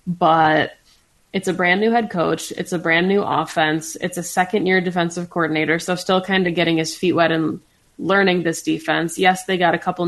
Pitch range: 165-200 Hz